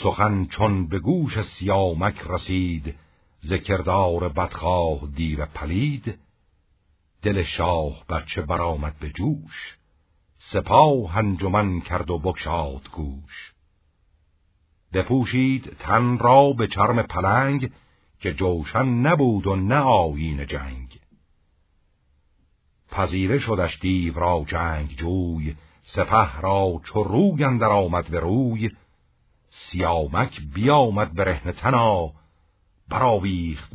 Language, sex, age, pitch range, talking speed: Persian, male, 60-79, 80-105 Hz, 95 wpm